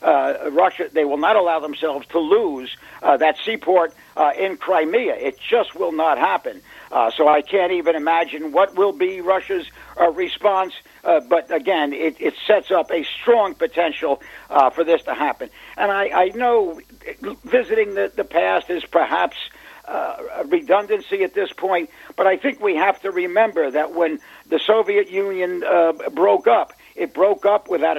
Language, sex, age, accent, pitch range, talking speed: English, male, 50-69, American, 175-260 Hz, 175 wpm